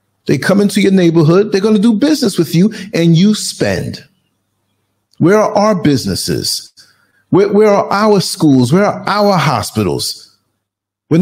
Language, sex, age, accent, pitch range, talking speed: English, male, 50-69, American, 110-165 Hz, 155 wpm